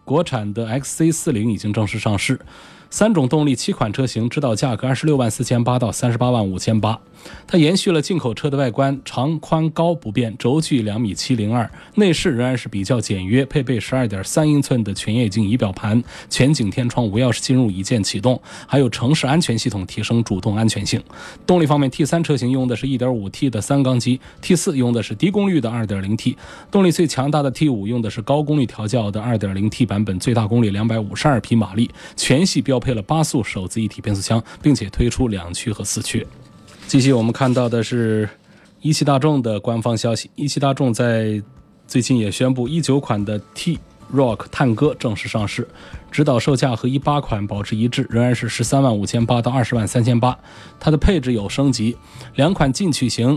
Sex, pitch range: male, 110-140 Hz